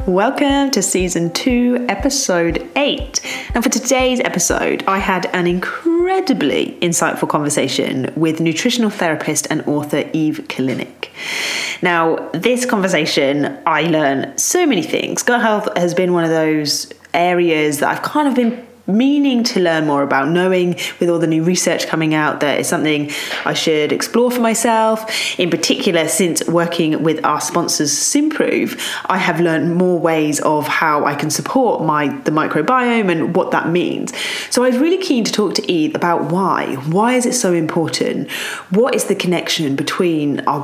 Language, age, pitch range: English, 20-39, 155-220 Hz